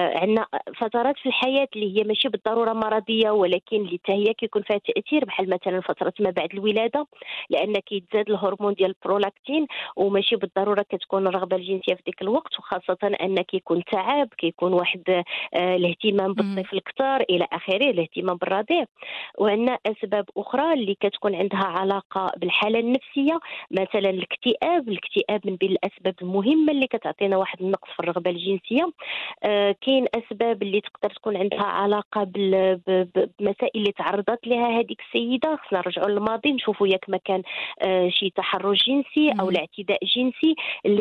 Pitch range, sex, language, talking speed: 190-230 Hz, female, Arabic, 145 wpm